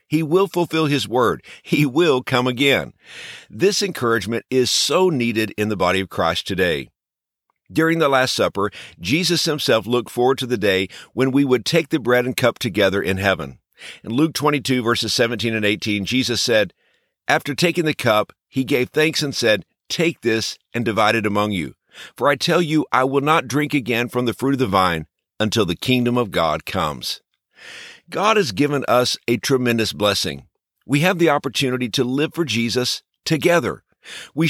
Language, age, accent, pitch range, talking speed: English, 50-69, American, 115-155 Hz, 185 wpm